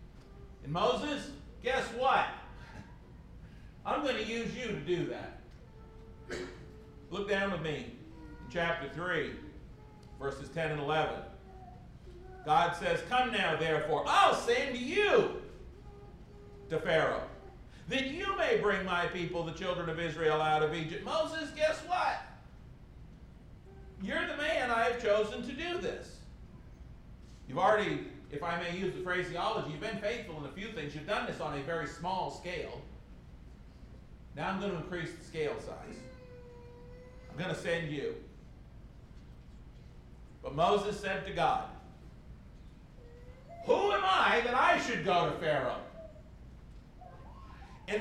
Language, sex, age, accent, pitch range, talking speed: English, male, 50-69, American, 160-265 Hz, 135 wpm